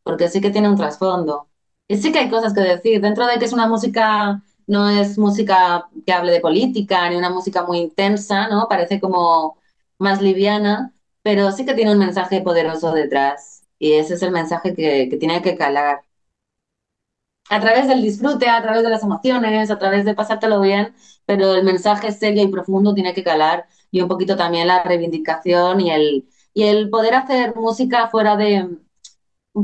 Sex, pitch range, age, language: female, 175-210 Hz, 20-39, Spanish